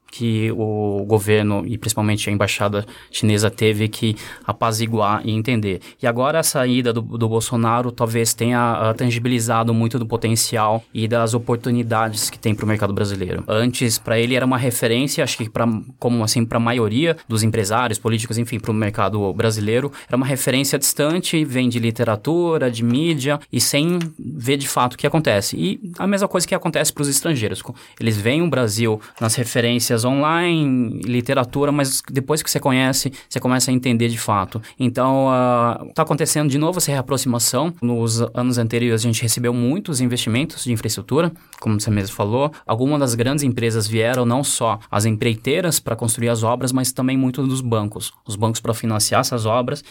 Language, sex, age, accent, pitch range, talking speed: Portuguese, male, 20-39, Brazilian, 115-135 Hz, 175 wpm